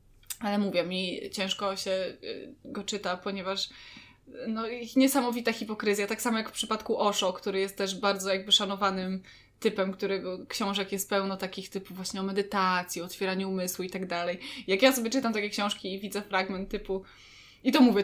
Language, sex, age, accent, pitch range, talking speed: Polish, female, 20-39, native, 195-230 Hz, 170 wpm